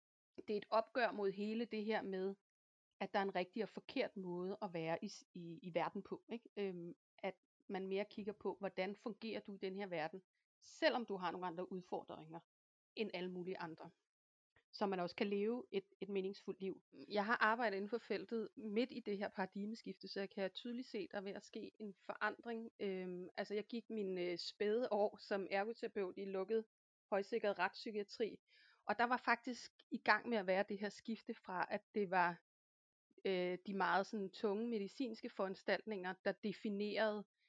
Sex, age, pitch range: female, 30-49, 185-215 Hz